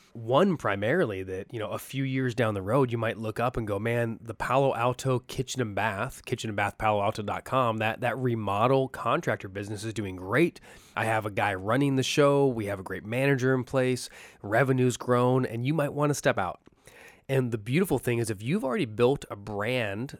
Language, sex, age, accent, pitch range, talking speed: English, male, 20-39, American, 105-135 Hz, 200 wpm